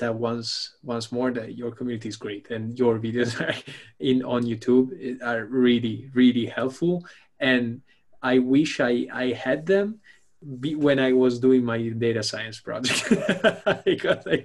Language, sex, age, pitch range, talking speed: English, male, 20-39, 115-130 Hz, 155 wpm